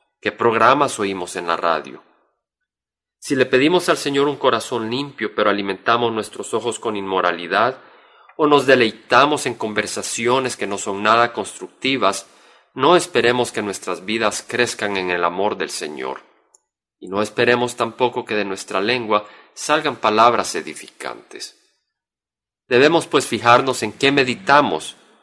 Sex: male